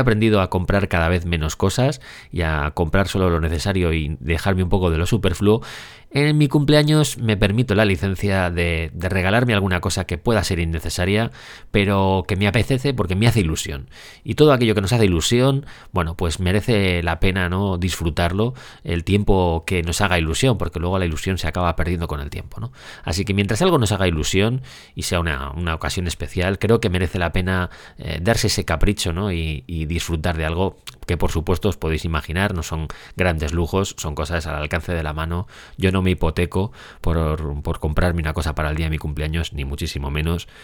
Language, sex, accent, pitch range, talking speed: Spanish, male, Spanish, 85-105 Hz, 205 wpm